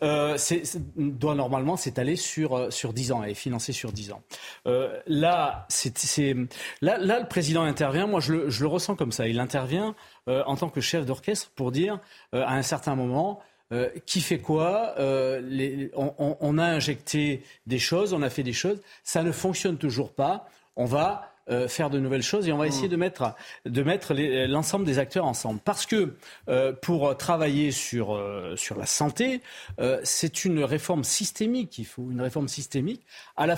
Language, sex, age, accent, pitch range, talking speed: French, male, 40-59, French, 130-170 Hz, 200 wpm